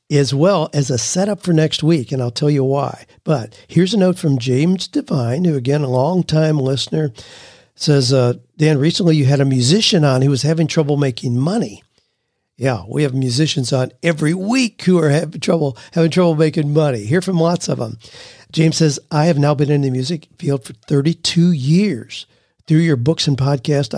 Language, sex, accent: English, male, American